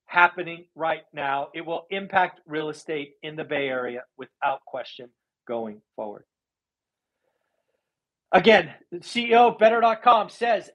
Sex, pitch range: male, 155-205 Hz